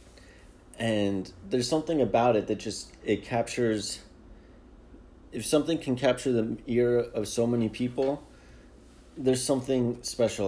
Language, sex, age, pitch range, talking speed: English, male, 30-49, 105-130 Hz, 125 wpm